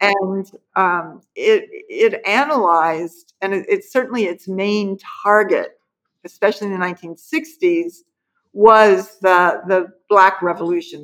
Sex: female